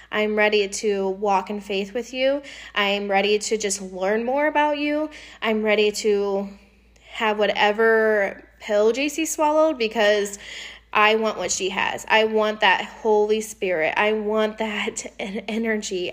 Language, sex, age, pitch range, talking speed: English, female, 20-39, 195-215 Hz, 145 wpm